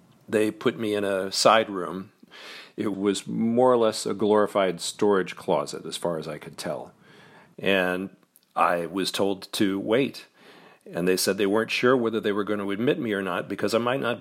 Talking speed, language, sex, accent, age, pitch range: 200 wpm, English, male, American, 40-59, 95-110 Hz